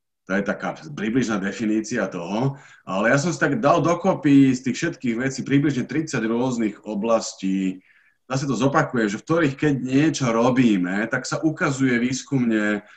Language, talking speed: Slovak, 155 wpm